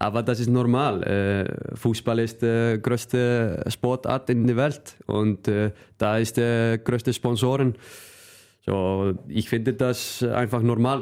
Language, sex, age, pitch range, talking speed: German, male, 20-39, 110-135 Hz, 130 wpm